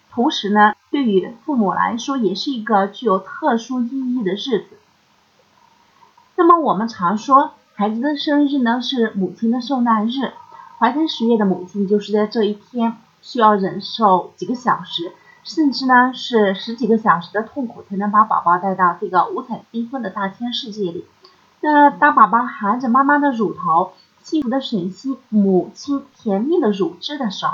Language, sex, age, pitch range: Chinese, female, 30-49, 210-280 Hz